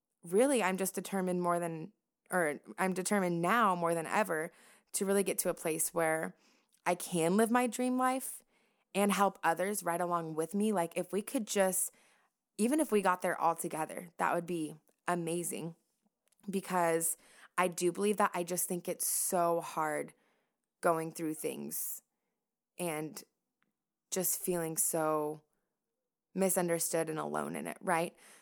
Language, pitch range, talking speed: English, 170-210 Hz, 155 wpm